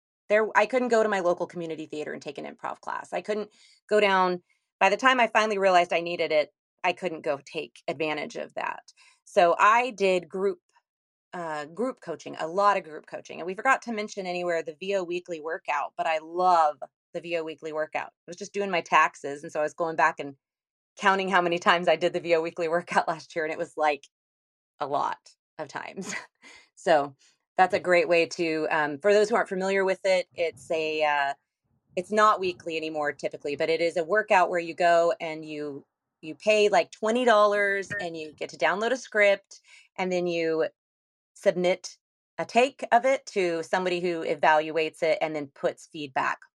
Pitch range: 155-195 Hz